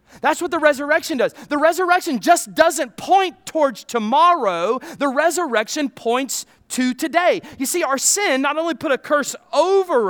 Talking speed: 160 wpm